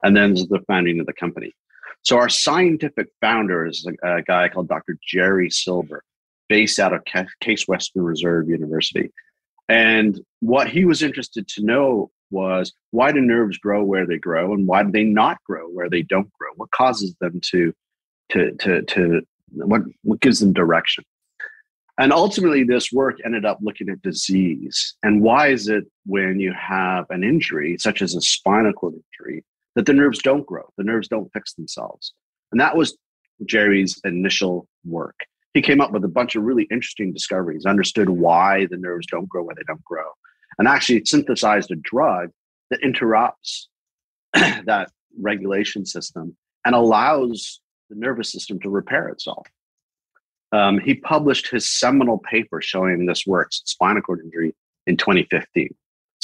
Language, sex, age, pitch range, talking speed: English, male, 40-59, 90-120 Hz, 165 wpm